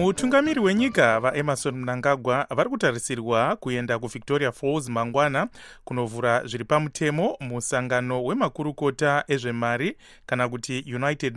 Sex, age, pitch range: male, 30-49, 120-145 Hz